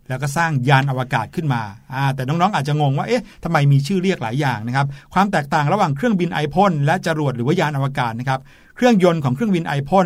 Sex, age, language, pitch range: male, 60-79, Thai, 135-175 Hz